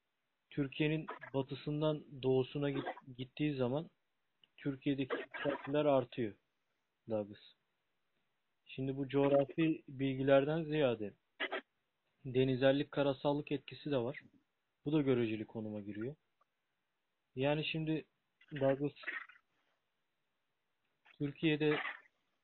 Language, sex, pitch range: Turkish, male, 130-150 Hz